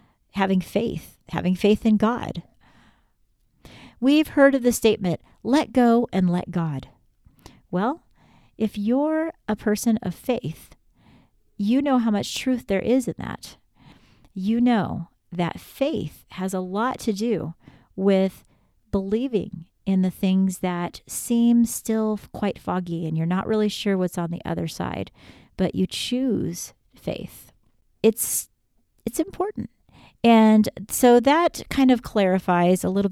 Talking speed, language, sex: 140 wpm, English, female